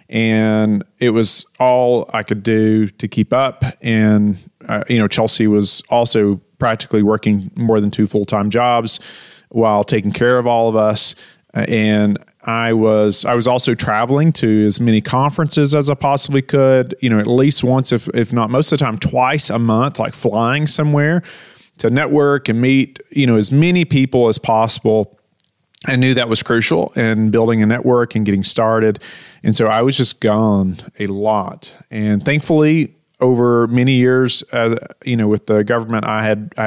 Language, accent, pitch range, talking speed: English, American, 110-130 Hz, 180 wpm